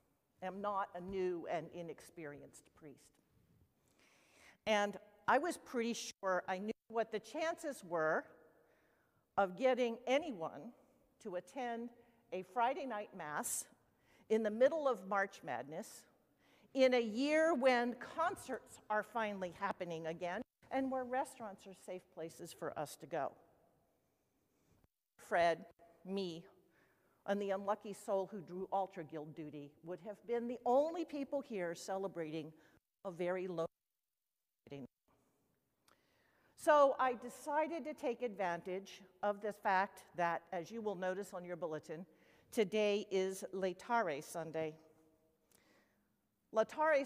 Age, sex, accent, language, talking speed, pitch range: 50-69, female, American, English, 120 wpm, 185-240 Hz